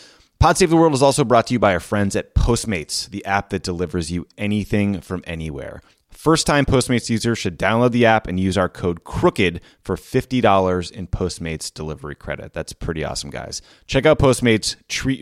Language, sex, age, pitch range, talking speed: English, male, 30-49, 90-110 Hz, 195 wpm